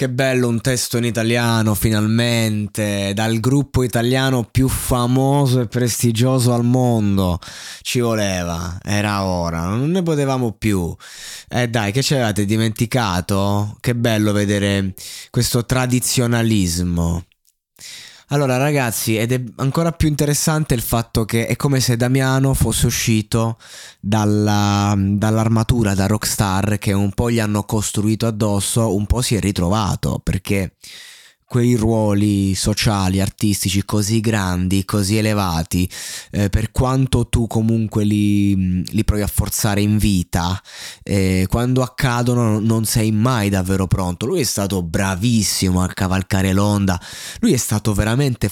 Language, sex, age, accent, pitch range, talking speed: Italian, male, 20-39, native, 100-120 Hz, 130 wpm